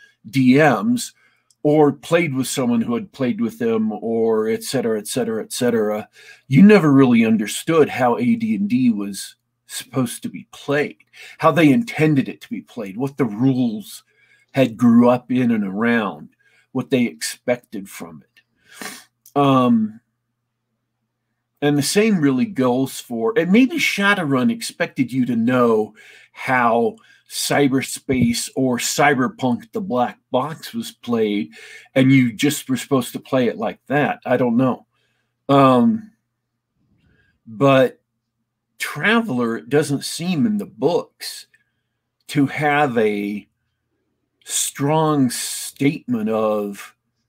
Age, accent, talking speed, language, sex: 50-69, American, 120 wpm, English, male